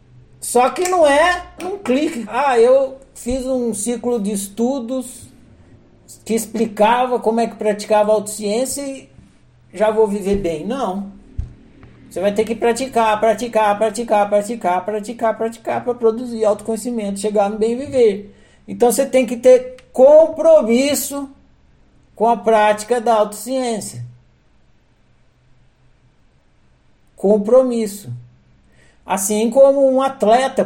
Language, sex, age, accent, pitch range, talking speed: Portuguese, male, 60-79, Brazilian, 175-240 Hz, 115 wpm